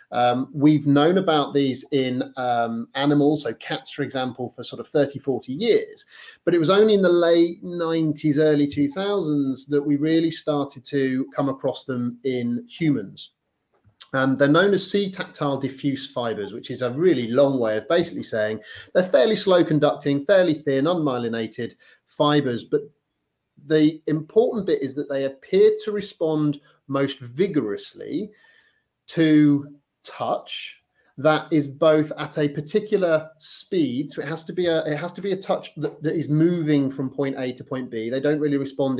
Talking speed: 170 wpm